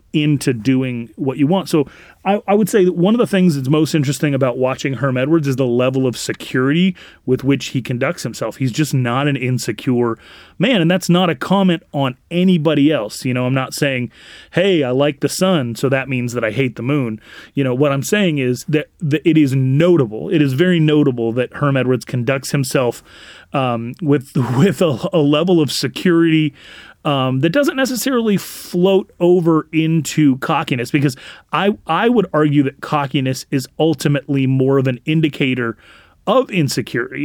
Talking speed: 185 wpm